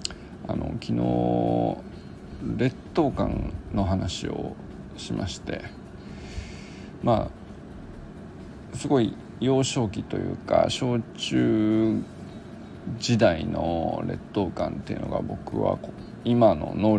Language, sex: Japanese, male